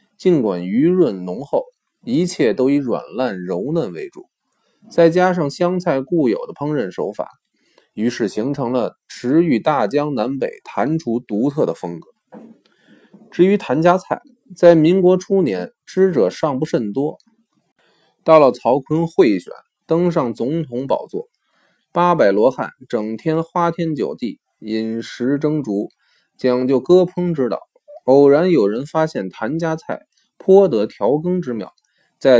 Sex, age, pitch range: male, 20-39, 130-180 Hz